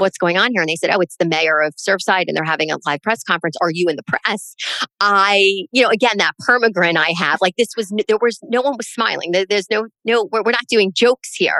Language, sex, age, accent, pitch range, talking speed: English, female, 40-59, American, 175-230 Hz, 265 wpm